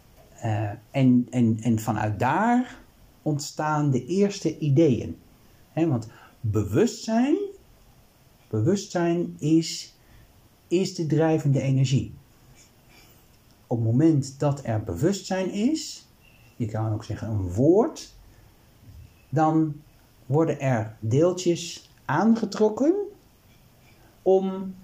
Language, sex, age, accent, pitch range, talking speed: Dutch, male, 60-79, Dutch, 110-160 Hz, 85 wpm